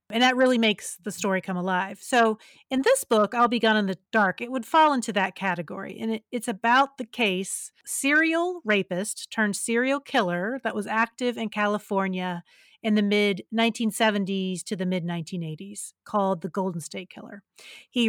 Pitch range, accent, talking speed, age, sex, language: 195-245 Hz, American, 170 wpm, 40-59, female, English